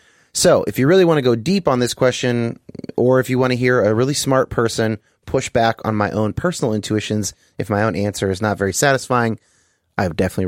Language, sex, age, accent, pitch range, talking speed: English, male, 30-49, American, 105-135 Hz, 225 wpm